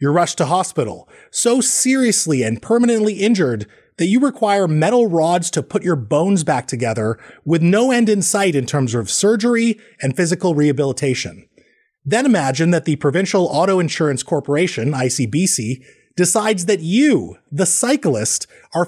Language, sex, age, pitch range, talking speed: English, male, 30-49, 150-210 Hz, 150 wpm